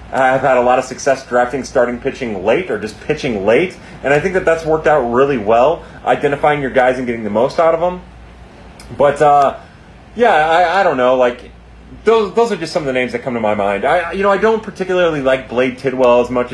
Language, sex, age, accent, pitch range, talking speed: English, male, 30-49, American, 115-155 Hz, 235 wpm